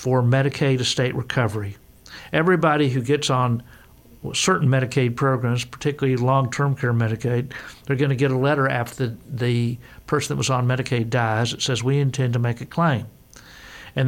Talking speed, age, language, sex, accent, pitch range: 160 wpm, 50-69, English, male, American, 120-140 Hz